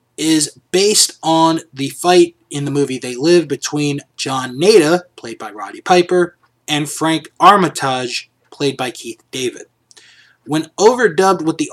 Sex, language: male, English